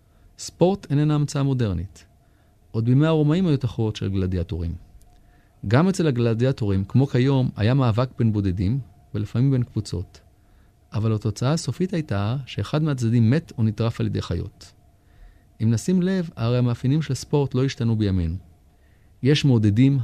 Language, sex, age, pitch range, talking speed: Hebrew, male, 30-49, 100-135 Hz, 140 wpm